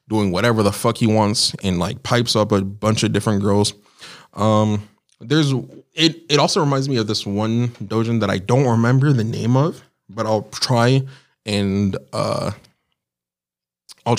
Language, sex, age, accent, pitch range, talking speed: English, male, 20-39, American, 100-115 Hz, 165 wpm